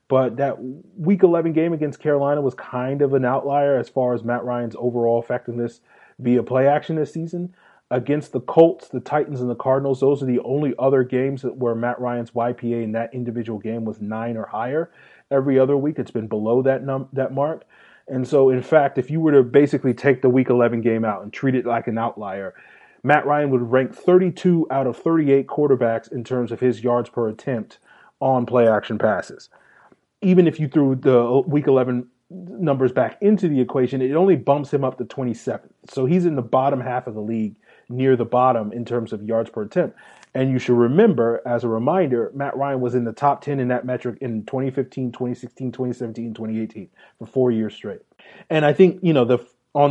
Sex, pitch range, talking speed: male, 120-140 Hz, 205 wpm